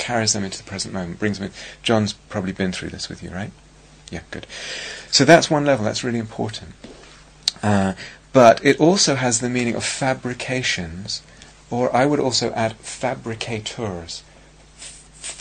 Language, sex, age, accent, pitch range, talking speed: English, male, 30-49, British, 100-125 Hz, 165 wpm